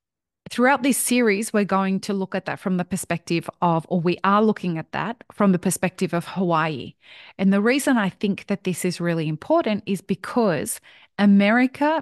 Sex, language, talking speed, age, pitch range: female, English, 185 wpm, 30-49, 175-220 Hz